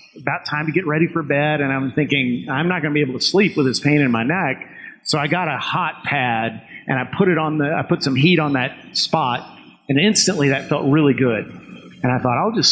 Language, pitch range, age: English, 135-165 Hz, 40-59